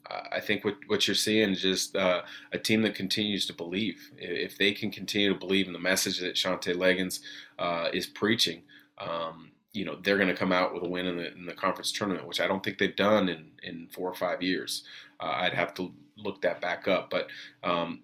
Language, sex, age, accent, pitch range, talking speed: English, male, 30-49, American, 90-100 Hz, 230 wpm